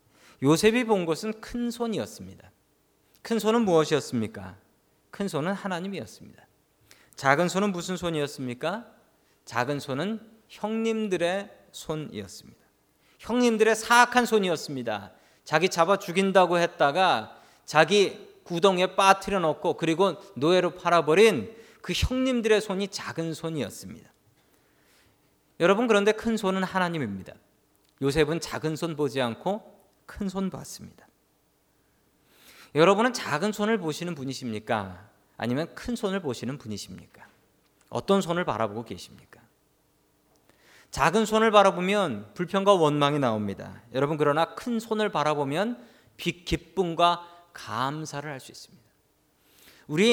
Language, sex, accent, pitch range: Korean, male, native, 145-210 Hz